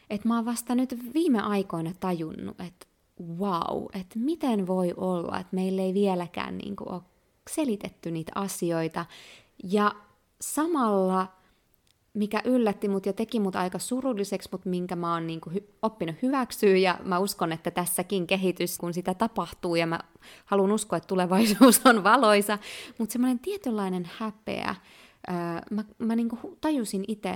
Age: 20-39